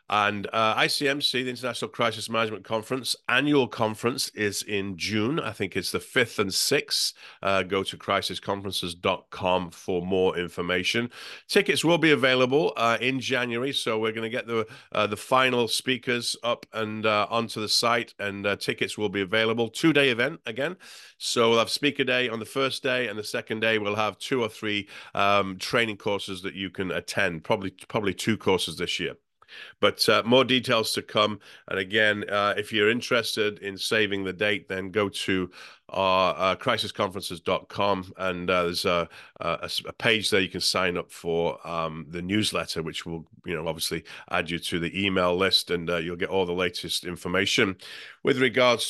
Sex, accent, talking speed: male, British, 180 wpm